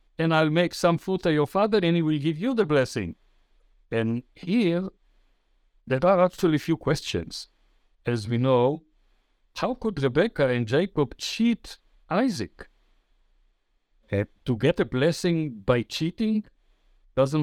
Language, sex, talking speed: English, male, 140 wpm